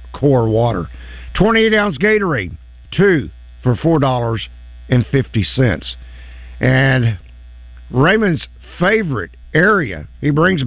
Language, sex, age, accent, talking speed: English, male, 60-79, American, 95 wpm